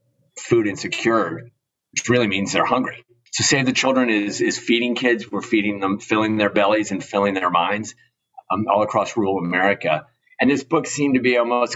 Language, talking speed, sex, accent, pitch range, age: English, 190 wpm, male, American, 100-120 Hz, 40-59